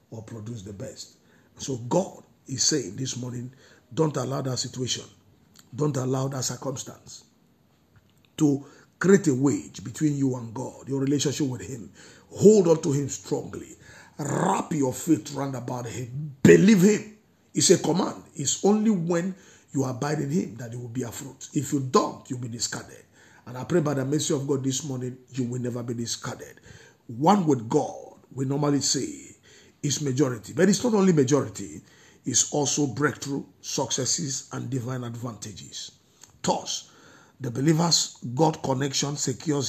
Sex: male